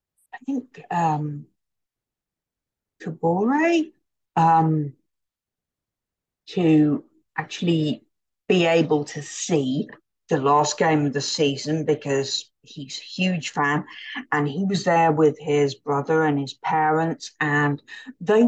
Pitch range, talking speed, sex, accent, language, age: 145-165 Hz, 105 wpm, female, British, English, 50-69